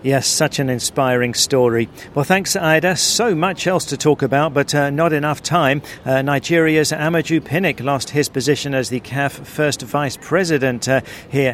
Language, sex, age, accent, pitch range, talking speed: English, male, 50-69, British, 125-145 Hz, 170 wpm